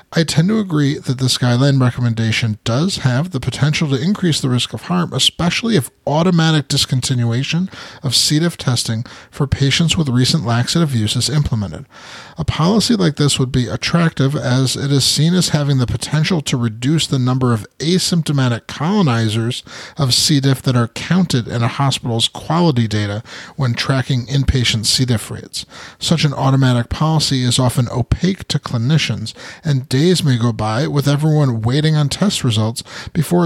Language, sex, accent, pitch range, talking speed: English, male, American, 120-160 Hz, 170 wpm